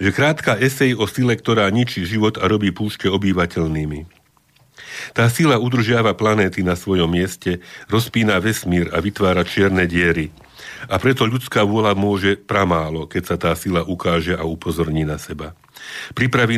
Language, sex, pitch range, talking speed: Slovak, male, 90-105 Hz, 150 wpm